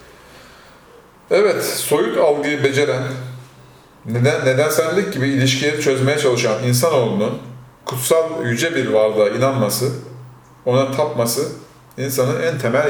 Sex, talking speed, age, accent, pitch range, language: male, 100 wpm, 40-59, native, 120-145 Hz, Turkish